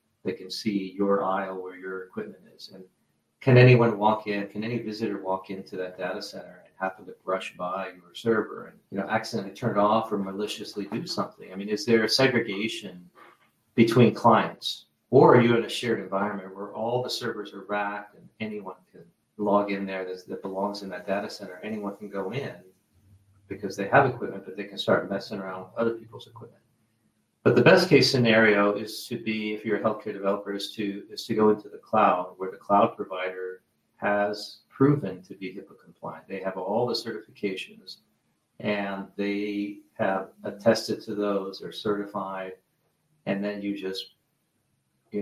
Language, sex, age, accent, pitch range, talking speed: English, male, 40-59, American, 95-110 Hz, 185 wpm